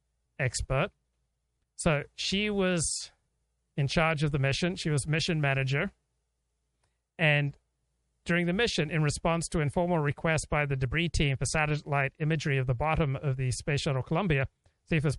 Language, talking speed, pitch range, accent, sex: English, 160 wpm, 130-160 Hz, American, male